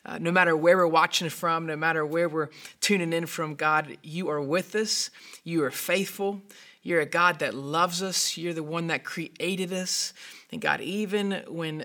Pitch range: 155-185 Hz